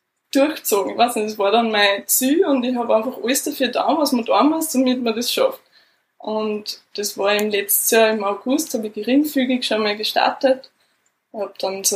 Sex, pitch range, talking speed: female, 215-255 Hz, 210 wpm